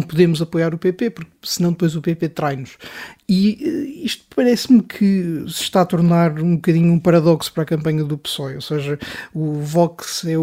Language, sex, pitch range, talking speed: Portuguese, male, 160-185 Hz, 185 wpm